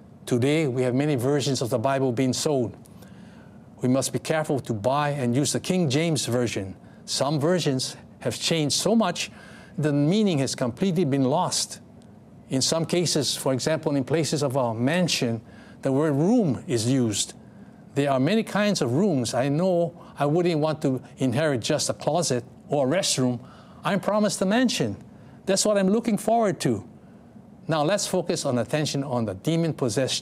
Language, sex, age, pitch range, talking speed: English, male, 60-79, 125-180 Hz, 175 wpm